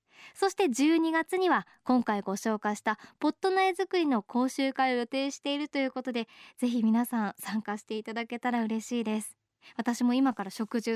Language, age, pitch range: Japanese, 20-39, 235-315 Hz